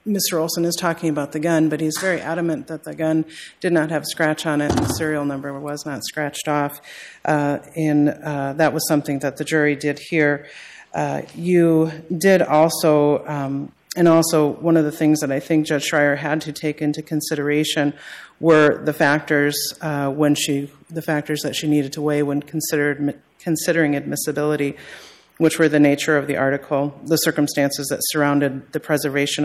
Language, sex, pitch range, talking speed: English, female, 140-155 Hz, 185 wpm